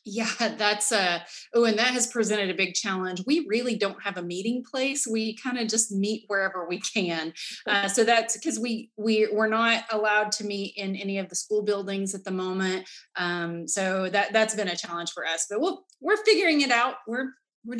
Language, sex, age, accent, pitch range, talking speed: English, female, 30-49, American, 190-235 Hz, 215 wpm